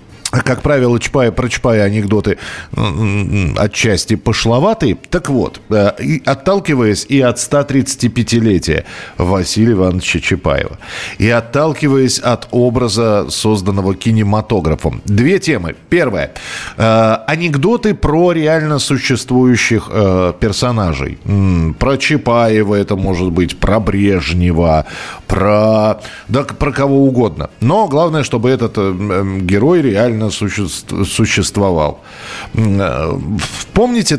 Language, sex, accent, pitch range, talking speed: Russian, male, native, 100-135 Hz, 90 wpm